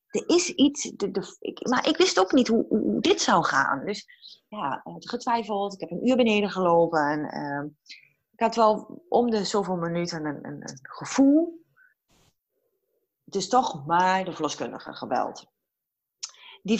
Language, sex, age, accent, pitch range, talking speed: Dutch, female, 30-49, Dutch, 145-220 Hz, 165 wpm